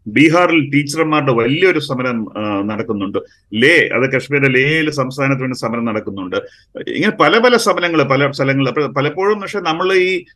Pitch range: 145-185 Hz